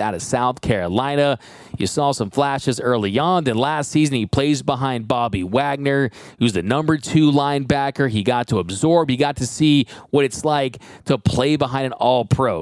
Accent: American